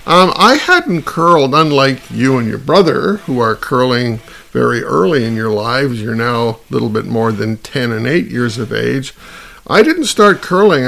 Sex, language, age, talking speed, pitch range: male, English, 50-69, 190 wpm, 120-155 Hz